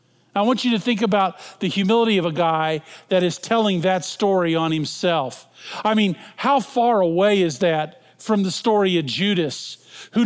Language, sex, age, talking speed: English, male, 50-69, 180 wpm